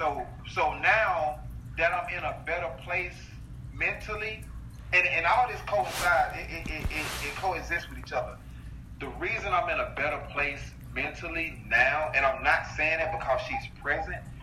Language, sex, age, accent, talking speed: English, male, 30-49, American, 170 wpm